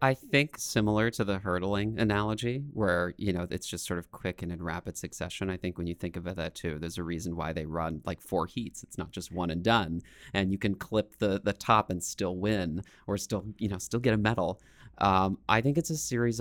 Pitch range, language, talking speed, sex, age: 85-105 Hz, English, 240 wpm, male, 30-49